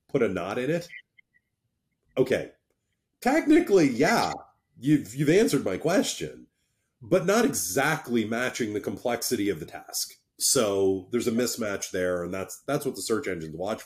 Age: 30-49